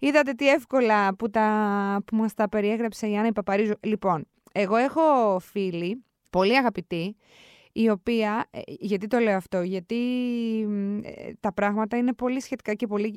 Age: 20-39